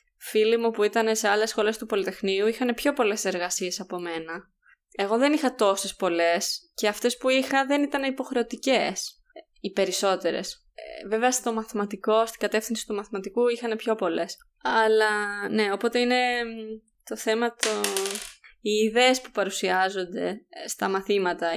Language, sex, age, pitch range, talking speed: Greek, female, 20-39, 195-250 Hz, 145 wpm